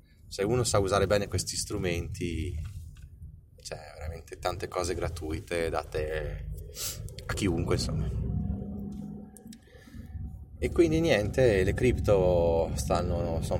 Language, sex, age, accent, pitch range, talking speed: Italian, male, 30-49, native, 80-110 Hz, 95 wpm